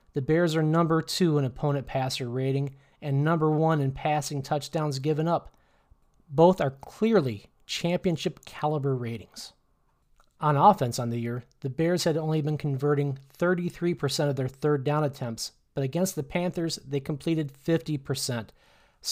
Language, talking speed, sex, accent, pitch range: English, 150 wpm, male, American, 135-165 Hz